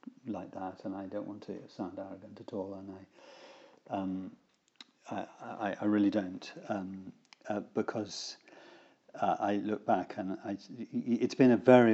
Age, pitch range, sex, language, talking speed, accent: 50-69, 100-115 Hz, male, English, 160 wpm, British